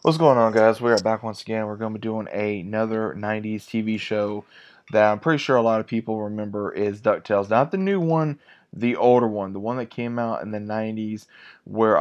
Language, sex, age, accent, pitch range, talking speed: English, male, 20-39, American, 105-110 Hz, 220 wpm